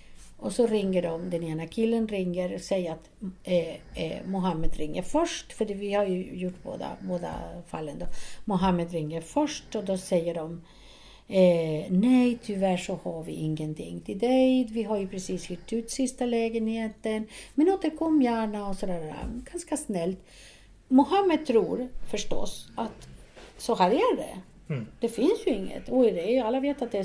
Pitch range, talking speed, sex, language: 185-295 Hz, 160 wpm, female, Swedish